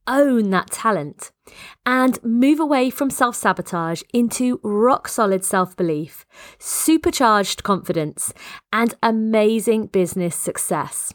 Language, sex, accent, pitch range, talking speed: English, female, British, 185-245 Hz, 90 wpm